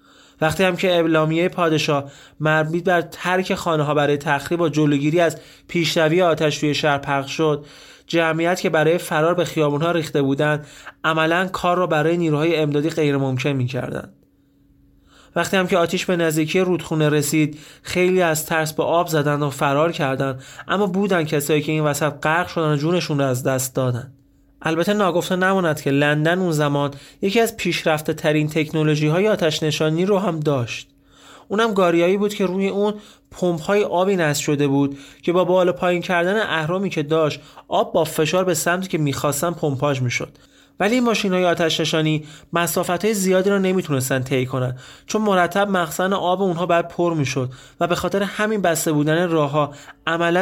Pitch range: 145-180 Hz